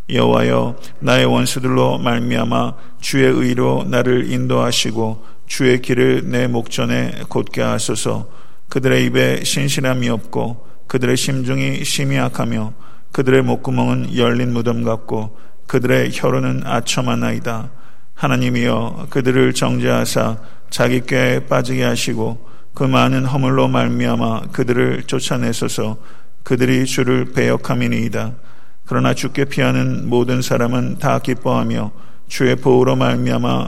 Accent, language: native, Korean